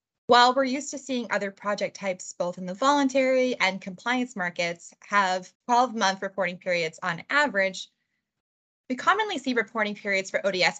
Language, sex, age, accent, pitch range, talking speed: English, female, 20-39, American, 185-245 Hz, 155 wpm